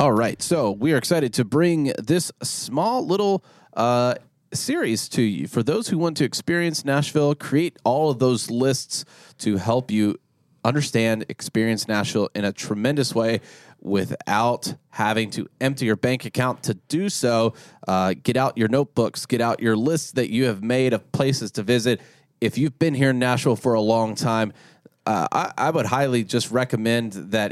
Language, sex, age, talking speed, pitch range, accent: English, male, 30-49, 180 wpm, 110-145 Hz, American